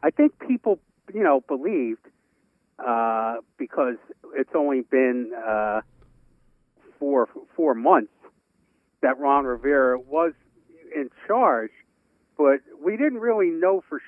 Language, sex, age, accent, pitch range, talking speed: English, male, 60-79, American, 120-175 Hz, 115 wpm